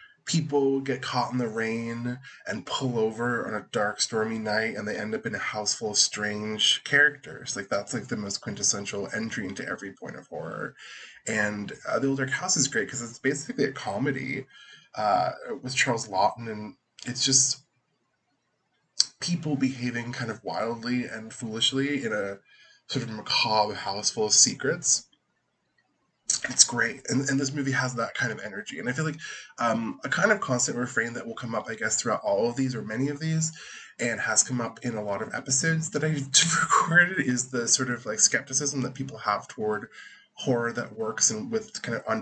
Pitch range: 110-140 Hz